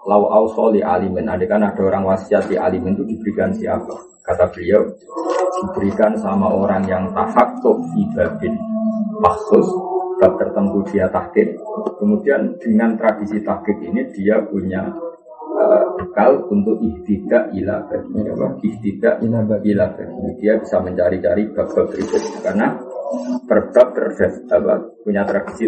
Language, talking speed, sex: Indonesian, 125 wpm, male